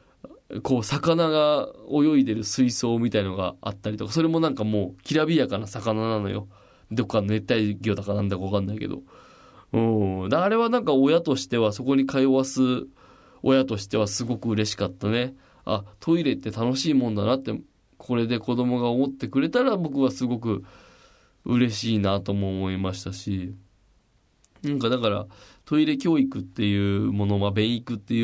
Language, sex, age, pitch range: Japanese, male, 20-39, 110-170 Hz